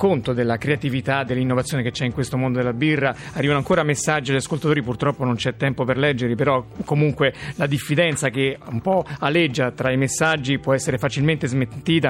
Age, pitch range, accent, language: 40-59, 135-160 Hz, native, Italian